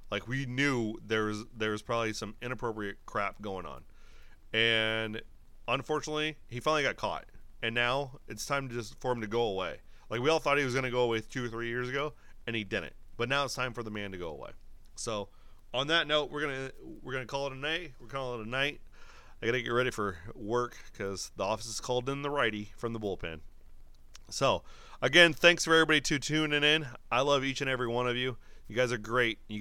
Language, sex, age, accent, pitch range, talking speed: English, male, 30-49, American, 105-135 Hz, 225 wpm